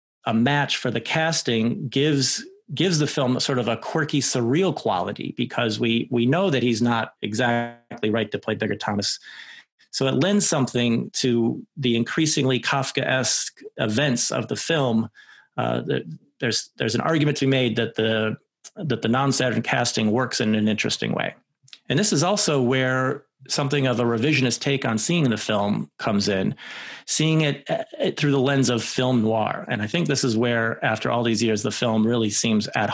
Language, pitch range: English, 115-140 Hz